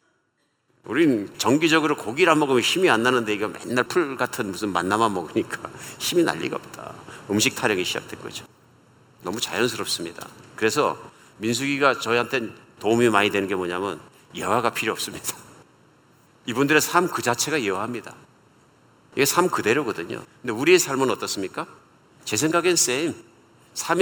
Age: 50-69